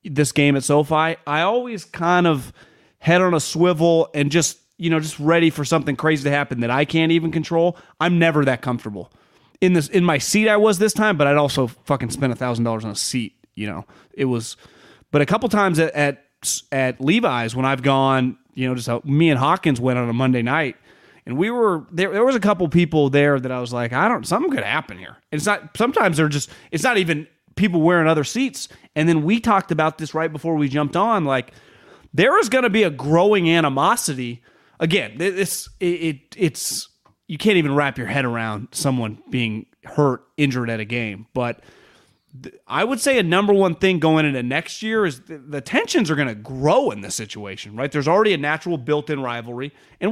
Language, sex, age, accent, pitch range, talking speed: English, male, 30-49, American, 130-175 Hz, 215 wpm